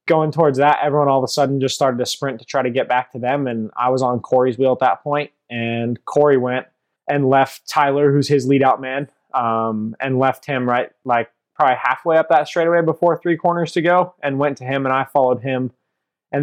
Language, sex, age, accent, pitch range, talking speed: English, male, 20-39, American, 125-150 Hz, 235 wpm